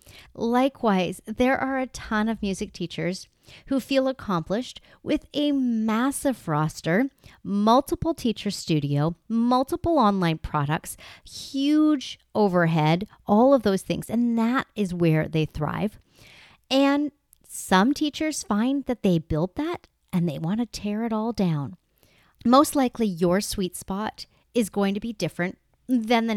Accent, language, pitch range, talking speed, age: American, English, 175-265 Hz, 140 wpm, 40-59